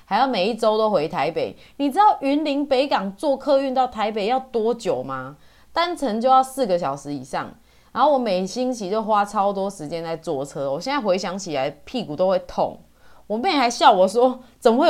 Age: 20-39